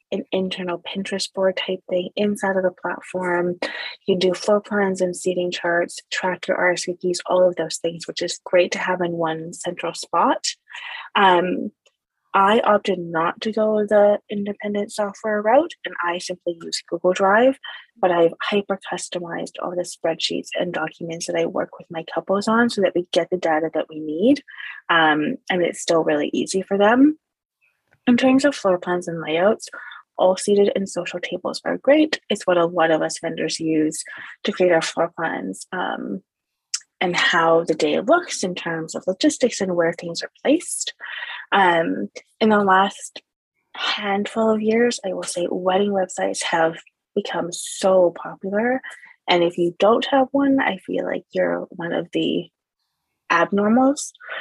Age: 20-39